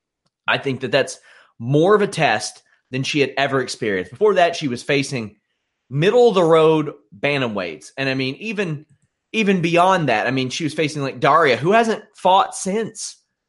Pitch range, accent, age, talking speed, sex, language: 130-175 Hz, American, 30-49, 170 wpm, male, English